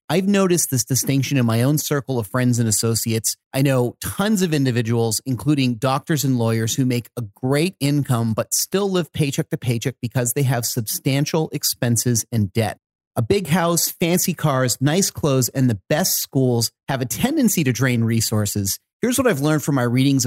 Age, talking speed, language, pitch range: 30-49, 185 wpm, English, 120-165 Hz